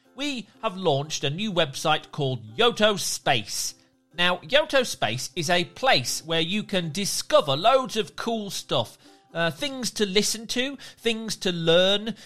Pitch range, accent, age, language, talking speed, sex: 145-210 Hz, British, 40-59, English, 150 wpm, male